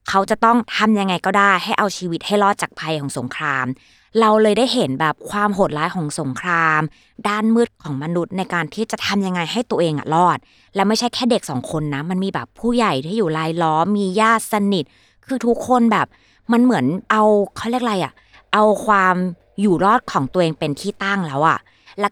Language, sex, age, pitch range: Thai, female, 20-39, 150-205 Hz